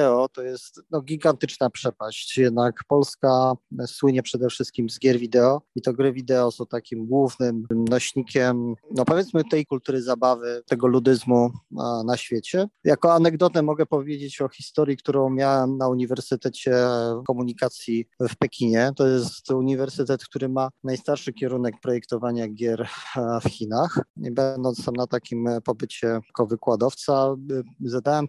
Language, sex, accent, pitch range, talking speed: Polish, male, native, 120-145 Hz, 140 wpm